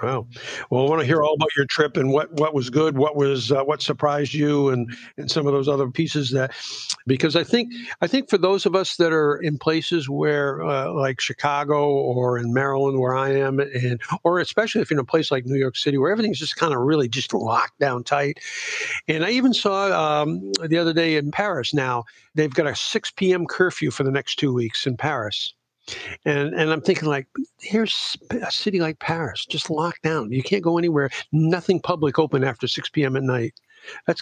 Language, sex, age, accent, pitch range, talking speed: English, male, 60-79, American, 135-170 Hz, 215 wpm